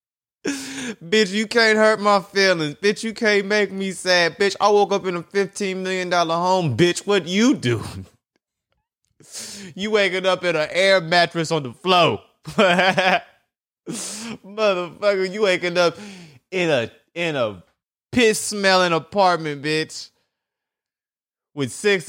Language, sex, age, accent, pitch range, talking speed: English, male, 20-39, American, 140-195 Hz, 135 wpm